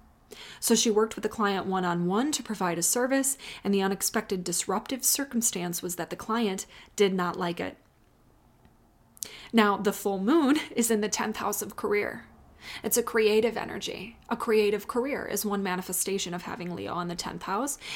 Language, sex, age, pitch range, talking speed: English, female, 20-39, 190-235 Hz, 175 wpm